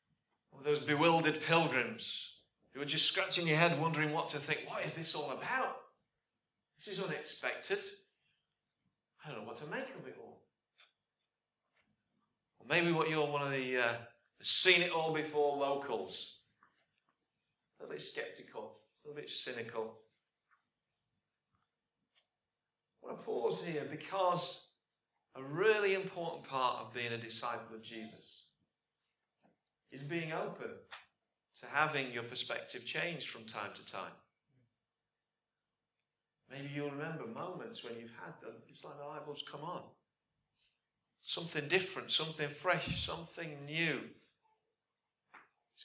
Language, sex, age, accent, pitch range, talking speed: English, male, 40-59, British, 130-175 Hz, 125 wpm